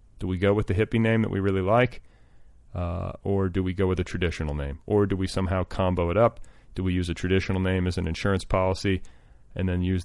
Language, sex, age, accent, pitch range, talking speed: English, male, 30-49, American, 85-105 Hz, 240 wpm